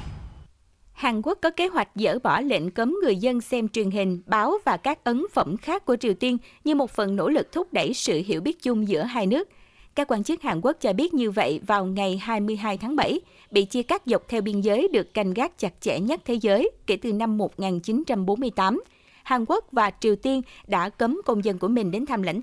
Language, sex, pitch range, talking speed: Vietnamese, female, 205-275 Hz, 225 wpm